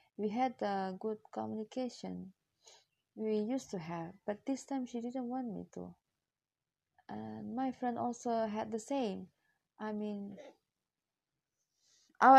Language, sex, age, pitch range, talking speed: Indonesian, female, 20-39, 200-250 Hz, 135 wpm